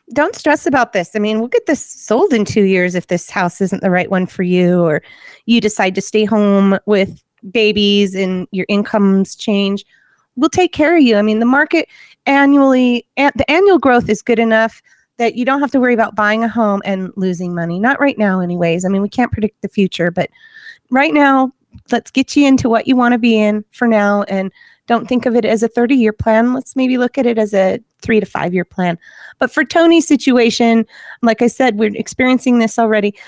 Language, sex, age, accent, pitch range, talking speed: English, female, 30-49, American, 200-250 Hz, 220 wpm